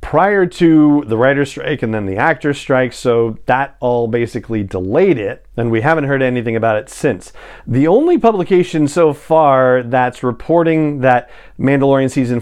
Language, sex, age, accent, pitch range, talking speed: English, male, 40-59, American, 120-150 Hz, 165 wpm